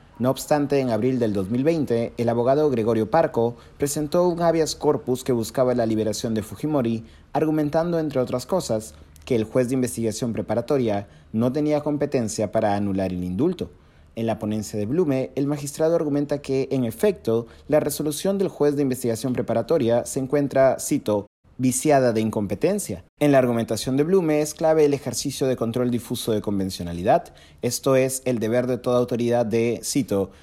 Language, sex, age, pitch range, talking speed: Spanish, male, 30-49, 115-145 Hz, 165 wpm